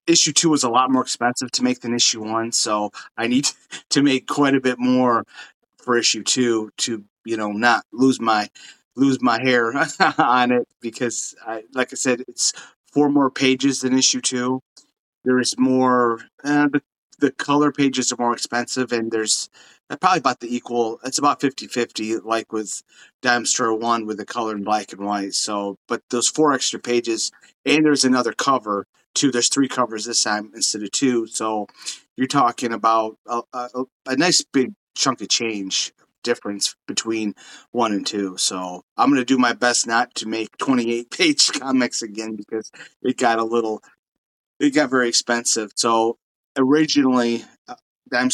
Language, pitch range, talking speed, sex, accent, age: English, 110-130 Hz, 175 wpm, male, American, 30-49